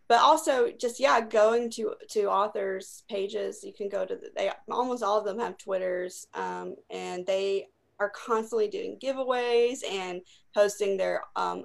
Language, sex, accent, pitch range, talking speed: English, female, American, 190-265 Hz, 165 wpm